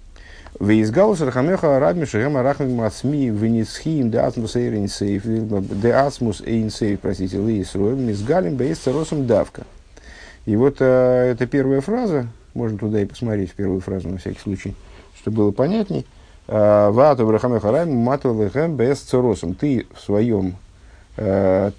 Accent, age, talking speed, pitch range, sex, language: native, 50-69, 60 wpm, 95-120 Hz, male, Russian